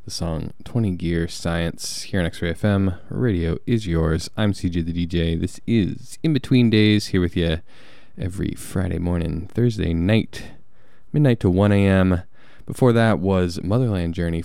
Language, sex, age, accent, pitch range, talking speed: English, male, 20-39, American, 90-120 Hz, 160 wpm